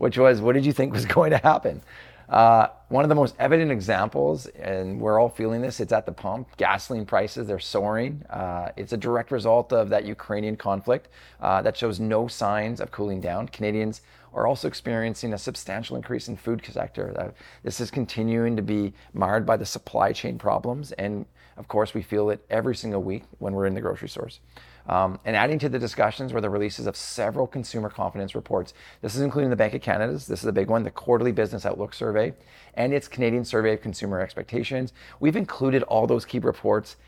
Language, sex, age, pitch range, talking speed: English, male, 30-49, 100-120 Hz, 205 wpm